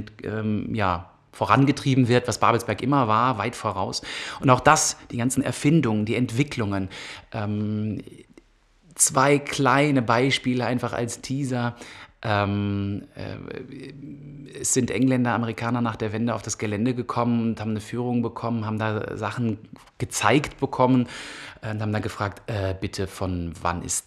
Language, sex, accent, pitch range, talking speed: German, male, German, 105-130 Hz, 140 wpm